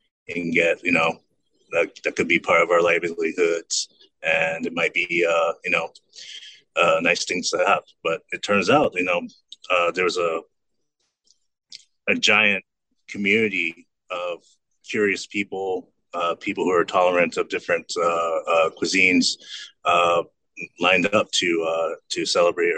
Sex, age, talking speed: male, 30-49, 150 wpm